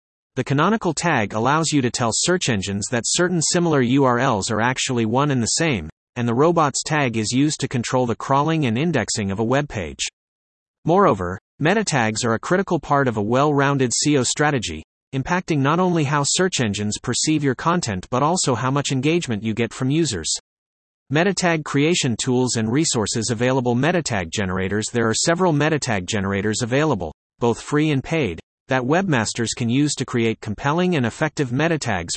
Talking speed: 180 wpm